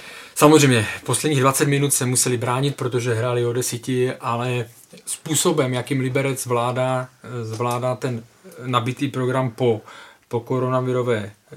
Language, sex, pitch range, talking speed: Czech, male, 120-135 Hz, 120 wpm